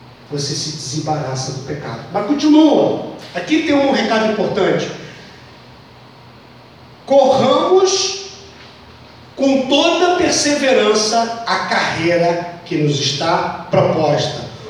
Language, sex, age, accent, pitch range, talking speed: Portuguese, male, 40-59, Brazilian, 215-295 Hz, 90 wpm